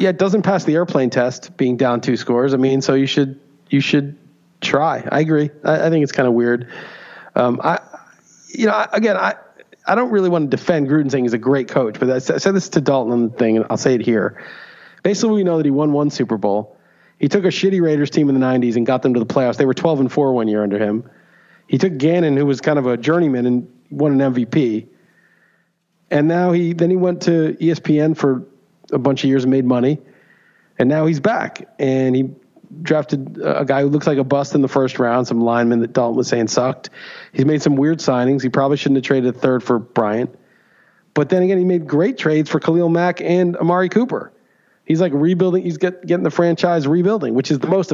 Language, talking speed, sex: English, 235 wpm, male